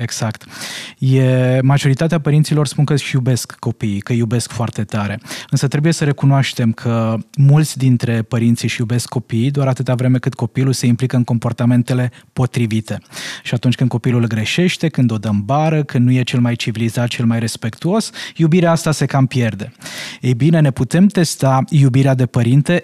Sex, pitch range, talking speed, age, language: male, 120-140 Hz, 175 wpm, 20-39, Romanian